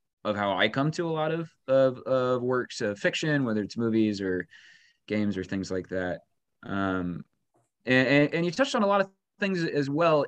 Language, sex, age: English, male, 30-49